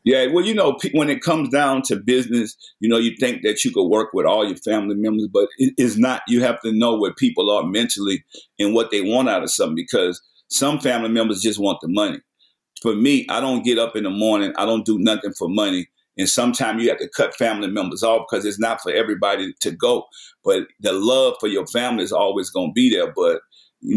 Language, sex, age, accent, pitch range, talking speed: English, male, 50-69, American, 110-145 Hz, 235 wpm